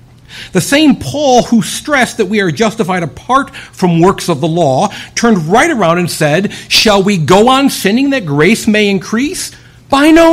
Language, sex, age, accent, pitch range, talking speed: English, male, 50-69, American, 120-205 Hz, 180 wpm